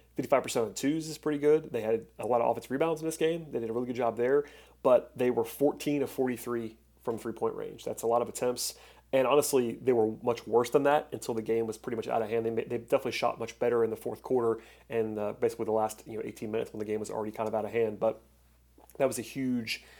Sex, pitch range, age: male, 115-130 Hz, 30-49